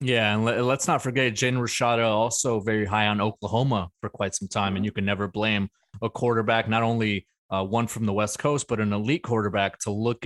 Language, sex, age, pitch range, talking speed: English, male, 20-39, 100-115 Hz, 215 wpm